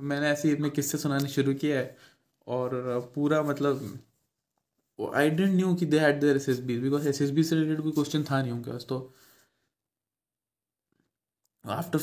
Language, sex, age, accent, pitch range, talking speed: Hindi, male, 20-39, native, 135-150 Hz, 155 wpm